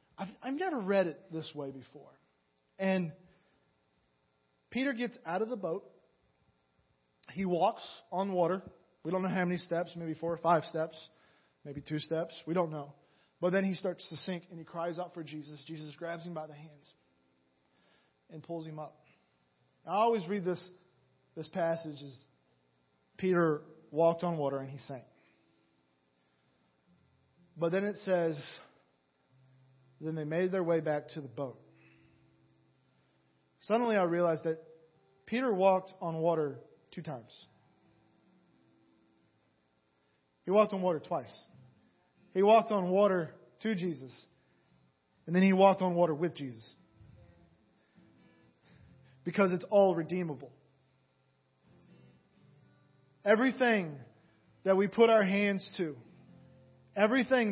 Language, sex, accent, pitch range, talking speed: English, male, American, 130-190 Hz, 130 wpm